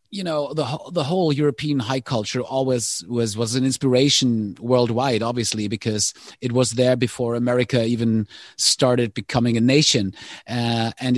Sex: male